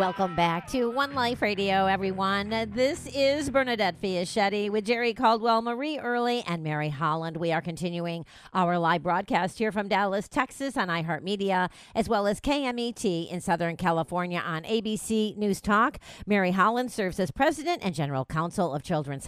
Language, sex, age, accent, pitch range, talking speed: English, female, 40-59, American, 175-230 Hz, 160 wpm